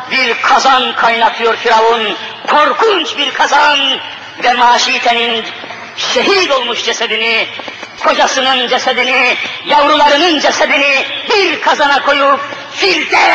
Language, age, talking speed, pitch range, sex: Turkish, 50-69, 90 wpm, 235-295 Hz, female